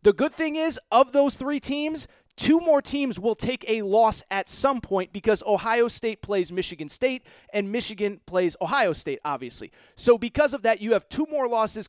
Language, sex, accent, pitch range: English, male, American, 195-250 Hz